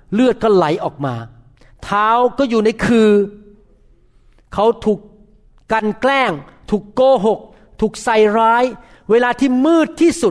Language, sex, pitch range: Thai, male, 140-205 Hz